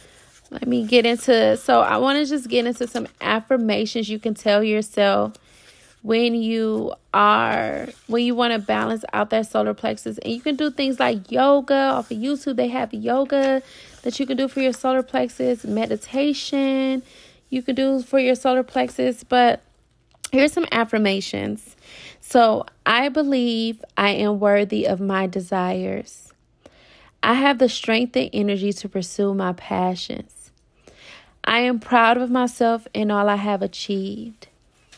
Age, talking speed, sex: 20-39, 155 wpm, female